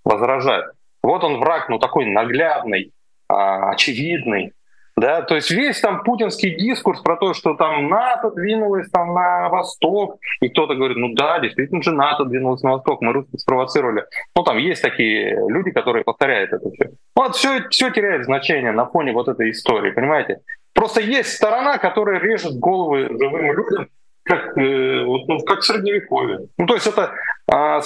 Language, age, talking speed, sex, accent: Russian, 20-39, 160 wpm, male, native